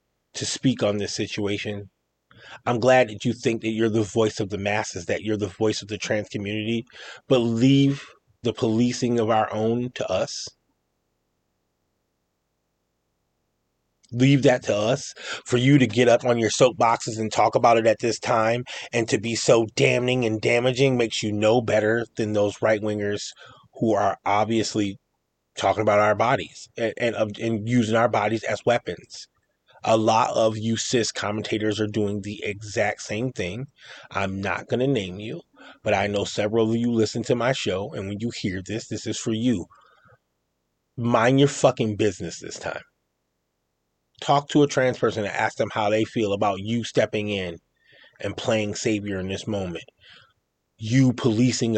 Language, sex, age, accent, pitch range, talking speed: English, male, 30-49, American, 105-120 Hz, 170 wpm